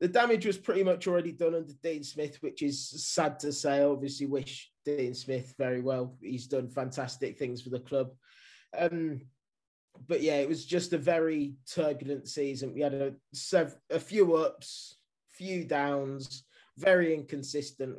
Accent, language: British, English